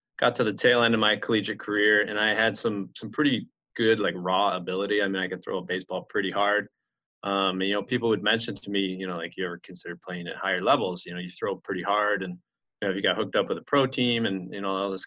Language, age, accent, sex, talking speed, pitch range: English, 20-39, American, male, 275 wpm, 95-105 Hz